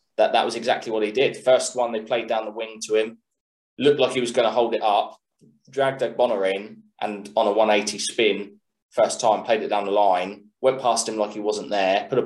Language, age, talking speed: English, 20-39, 245 wpm